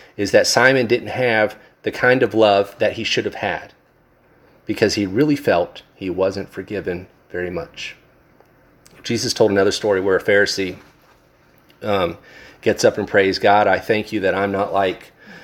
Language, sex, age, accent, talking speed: English, male, 40-59, American, 165 wpm